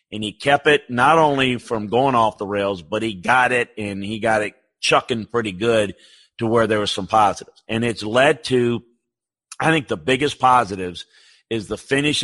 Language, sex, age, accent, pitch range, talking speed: English, male, 50-69, American, 105-125 Hz, 195 wpm